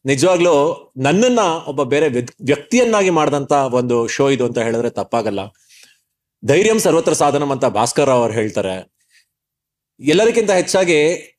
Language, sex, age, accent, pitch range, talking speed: Kannada, male, 30-49, native, 130-180 Hz, 120 wpm